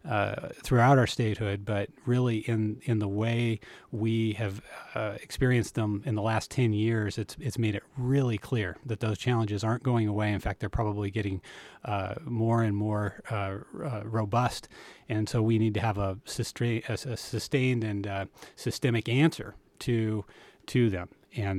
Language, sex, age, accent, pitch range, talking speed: English, male, 30-49, American, 105-120 Hz, 175 wpm